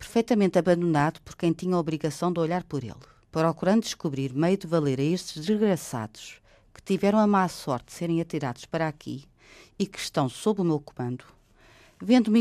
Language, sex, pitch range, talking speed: Portuguese, female, 150-195 Hz, 180 wpm